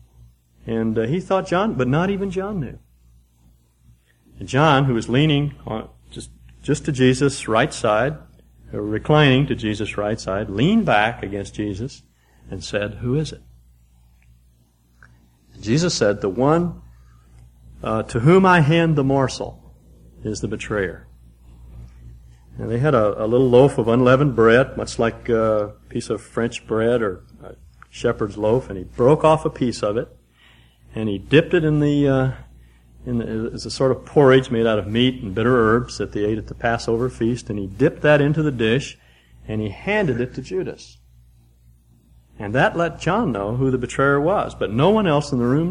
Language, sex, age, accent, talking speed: English, male, 50-69, American, 180 wpm